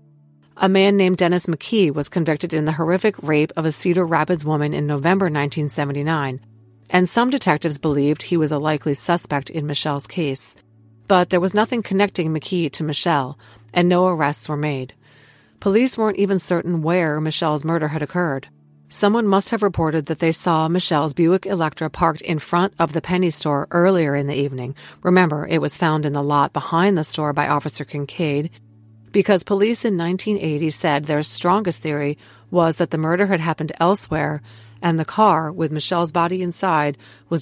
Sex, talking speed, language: female, 175 wpm, English